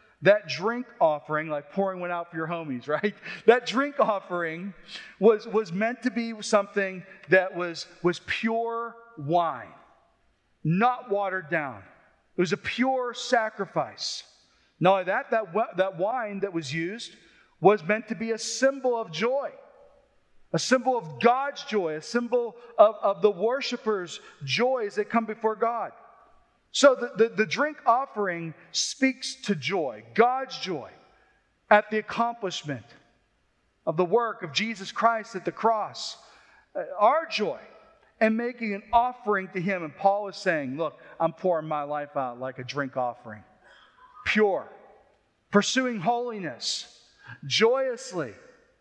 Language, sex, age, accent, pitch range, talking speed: English, male, 40-59, American, 175-235 Hz, 140 wpm